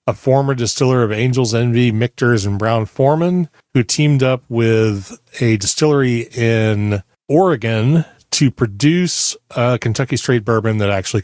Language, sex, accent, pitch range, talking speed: English, male, American, 110-145 Hz, 140 wpm